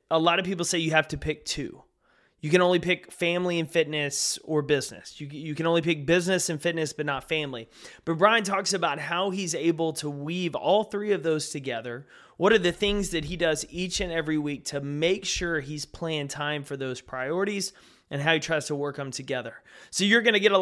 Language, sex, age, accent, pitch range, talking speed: English, male, 20-39, American, 145-170 Hz, 225 wpm